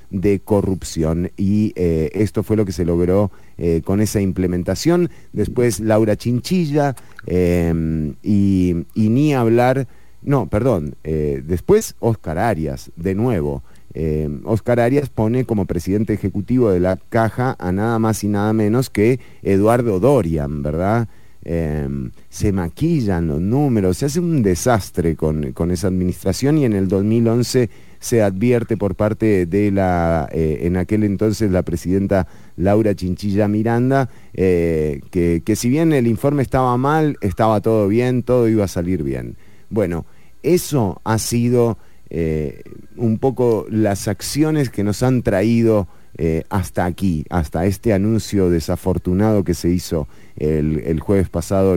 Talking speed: 145 wpm